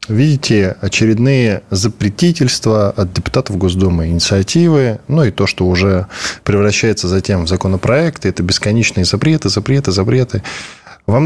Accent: native